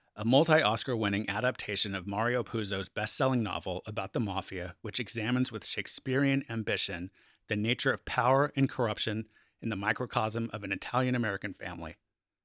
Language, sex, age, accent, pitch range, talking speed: English, male, 30-49, American, 100-125 Hz, 140 wpm